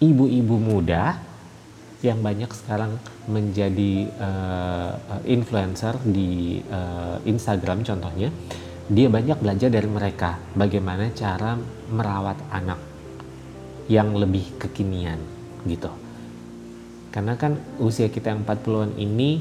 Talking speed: 100 wpm